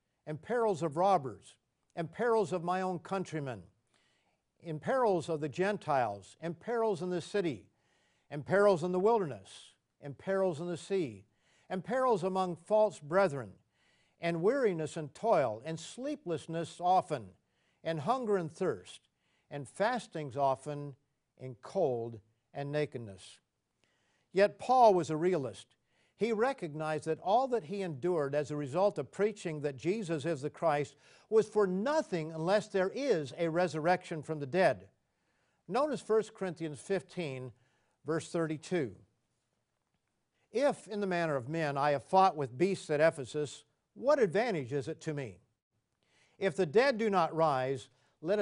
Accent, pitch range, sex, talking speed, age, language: American, 140-195 Hz, male, 145 wpm, 50-69, English